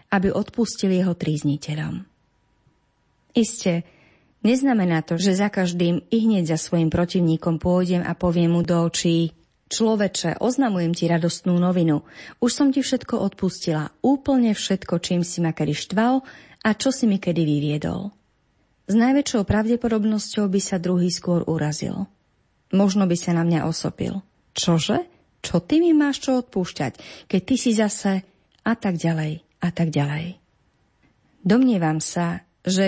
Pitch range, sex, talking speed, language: 170-215 Hz, female, 140 wpm, Slovak